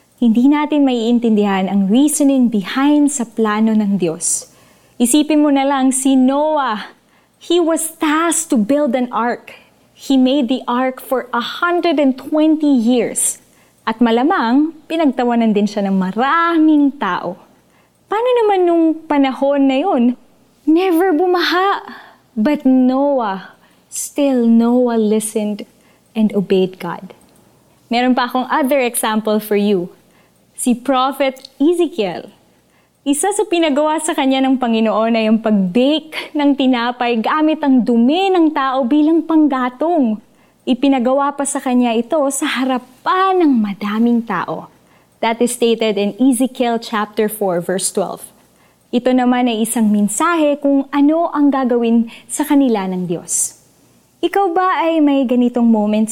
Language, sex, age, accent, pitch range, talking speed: Filipino, female, 20-39, native, 225-295 Hz, 130 wpm